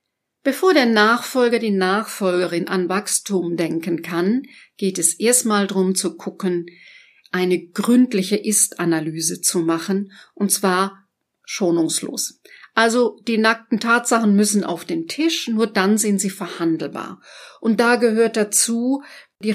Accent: German